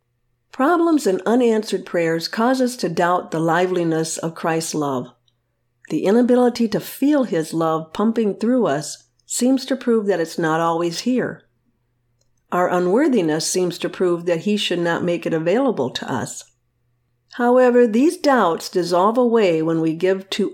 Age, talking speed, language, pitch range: 50-69, 155 wpm, English, 155-220 Hz